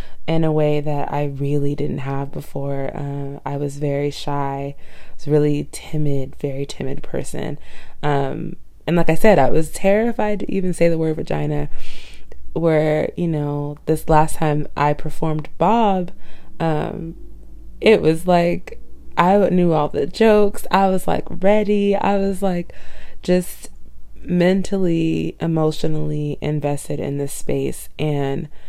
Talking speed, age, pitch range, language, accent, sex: 140 wpm, 20-39, 140-175 Hz, English, American, female